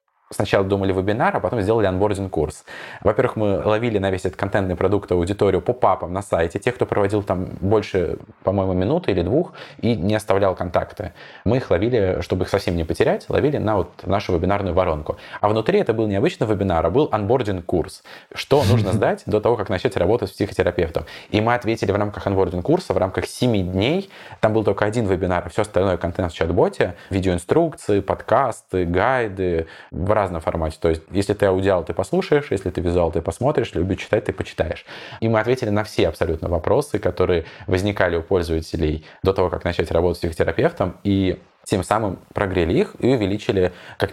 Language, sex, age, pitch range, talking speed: Russian, male, 20-39, 90-110 Hz, 190 wpm